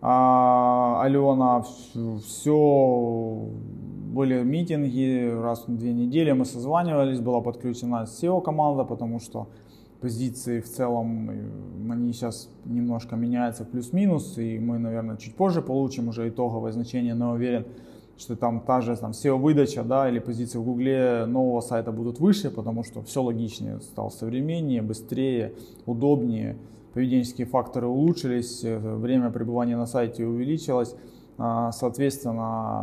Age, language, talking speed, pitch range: 20-39, Russian, 120 wpm, 115-130 Hz